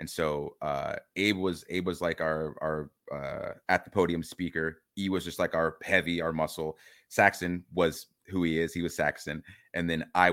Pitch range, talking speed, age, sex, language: 75-90 Hz, 200 wpm, 30-49, male, English